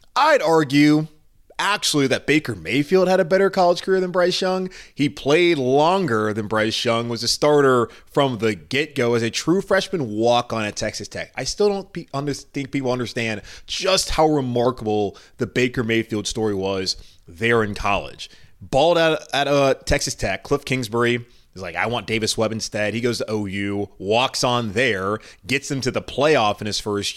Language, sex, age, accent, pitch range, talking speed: English, male, 20-39, American, 110-160 Hz, 185 wpm